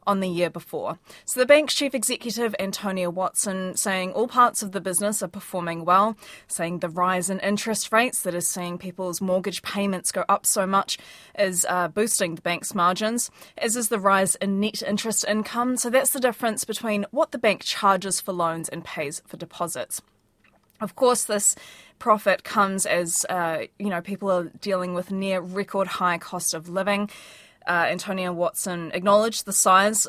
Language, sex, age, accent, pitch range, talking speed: English, female, 20-39, Australian, 180-220 Hz, 180 wpm